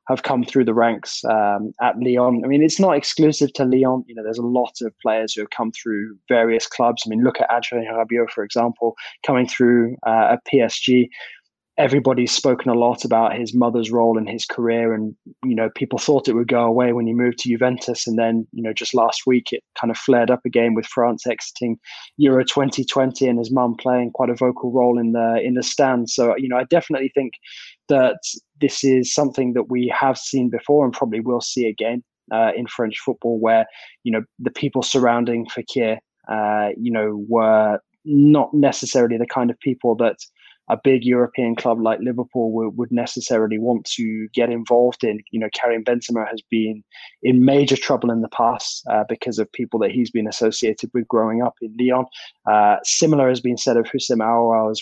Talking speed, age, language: 205 wpm, 20-39, English